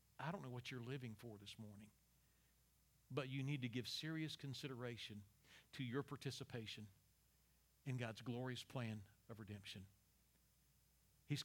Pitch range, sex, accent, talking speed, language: 125-155 Hz, male, American, 135 wpm, English